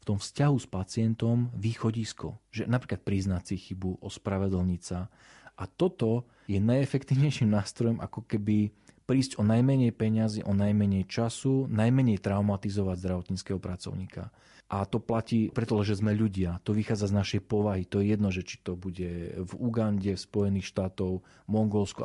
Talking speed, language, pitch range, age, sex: 150 wpm, Slovak, 95-115 Hz, 40-59, male